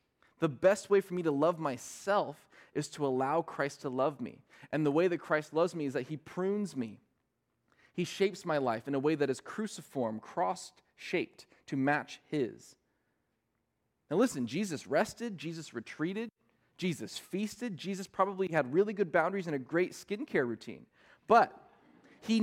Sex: male